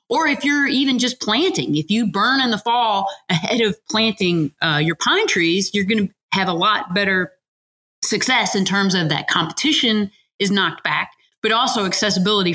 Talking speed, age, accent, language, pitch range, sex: 180 wpm, 30-49, American, English, 165-215 Hz, female